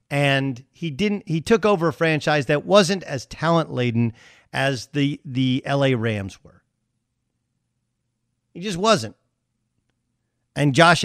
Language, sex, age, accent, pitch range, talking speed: English, male, 40-59, American, 125-175 Hz, 130 wpm